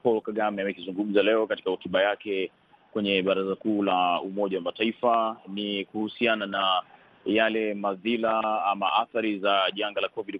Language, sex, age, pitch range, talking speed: Swahili, male, 30-49, 100-115 Hz, 140 wpm